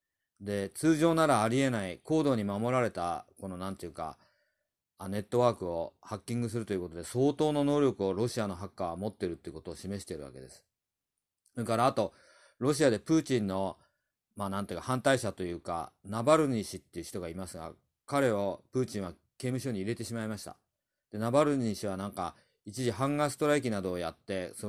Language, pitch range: Japanese, 95-130 Hz